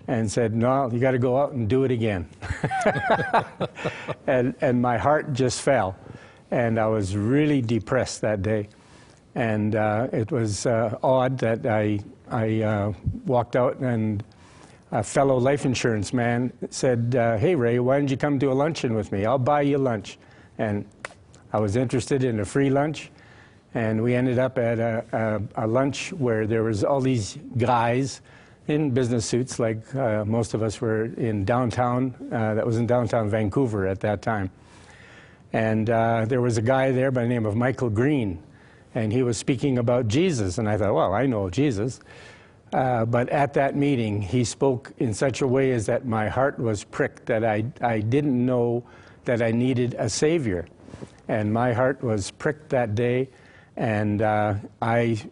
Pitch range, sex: 110-130 Hz, male